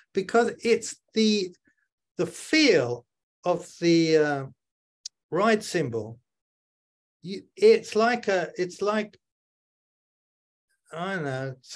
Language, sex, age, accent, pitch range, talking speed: English, male, 50-69, British, 140-185 Hz, 95 wpm